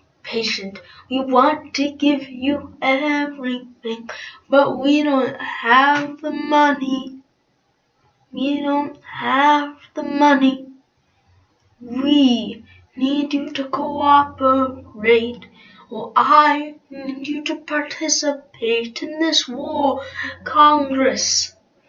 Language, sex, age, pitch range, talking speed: English, female, 20-39, 255-295 Hz, 90 wpm